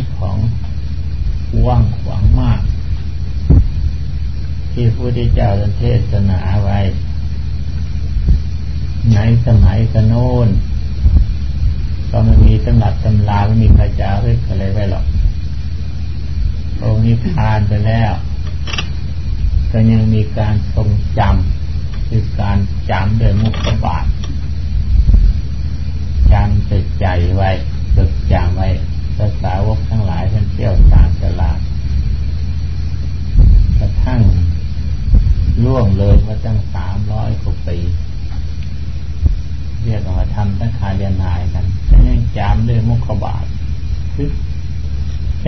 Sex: male